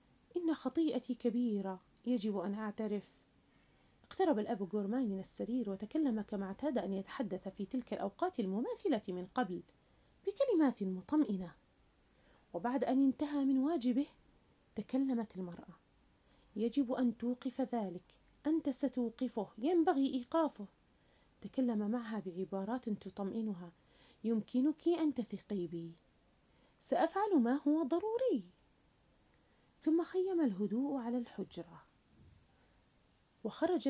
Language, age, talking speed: Arabic, 30-49, 100 wpm